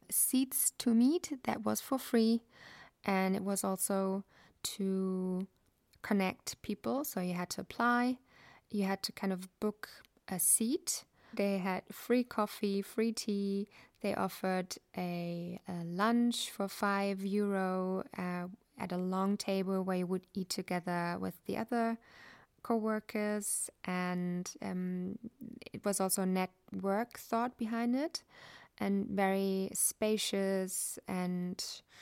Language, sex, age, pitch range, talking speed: English, female, 20-39, 180-215 Hz, 125 wpm